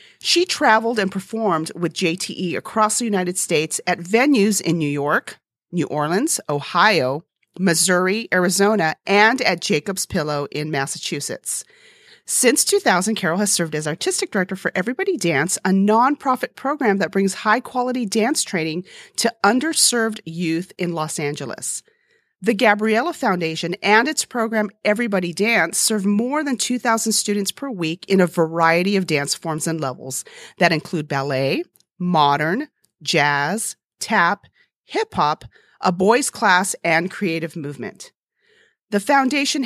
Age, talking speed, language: 40-59, 135 wpm, English